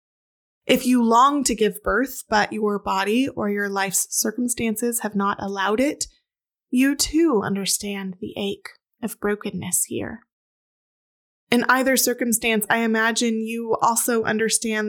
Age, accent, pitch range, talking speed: 20-39, American, 205-250 Hz, 135 wpm